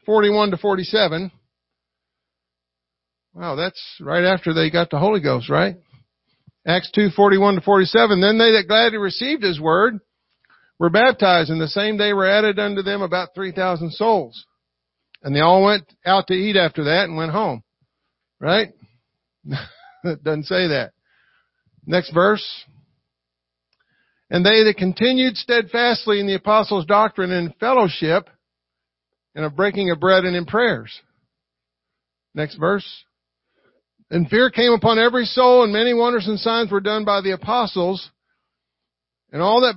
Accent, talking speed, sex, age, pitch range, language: American, 145 wpm, male, 50-69, 160-215 Hz, English